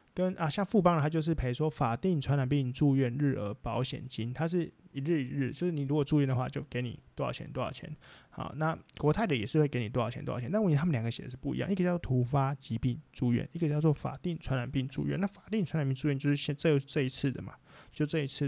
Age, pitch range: 20-39, 130-155 Hz